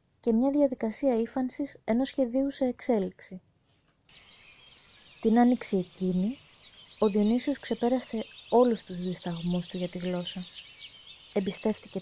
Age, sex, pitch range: 20-39, female, 185-245 Hz